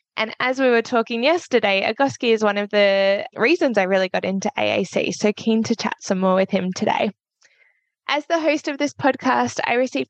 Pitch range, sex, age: 195-255 Hz, female, 20-39